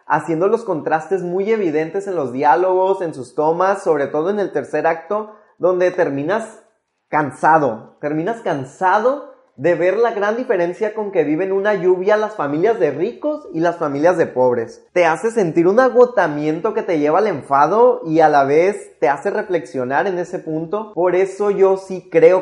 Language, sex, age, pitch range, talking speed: Spanish, male, 20-39, 155-200 Hz, 175 wpm